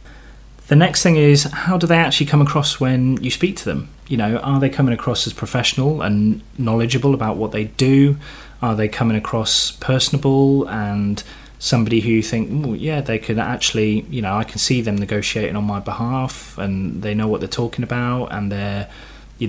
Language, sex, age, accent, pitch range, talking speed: English, male, 20-39, British, 105-135 Hz, 195 wpm